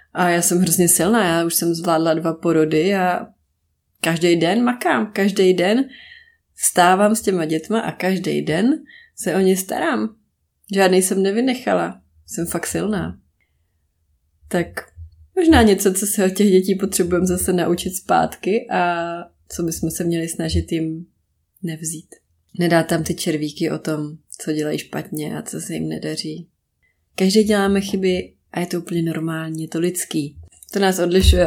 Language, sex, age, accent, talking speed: Czech, female, 20-39, native, 160 wpm